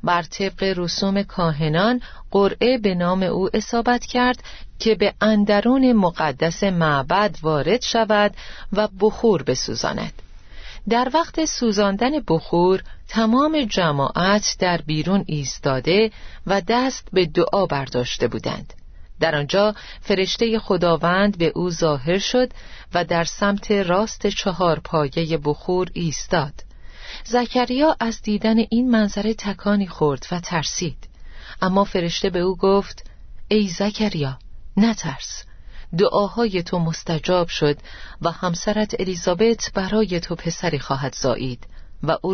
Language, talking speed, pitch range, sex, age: Persian, 115 wpm, 165-215 Hz, female, 40-59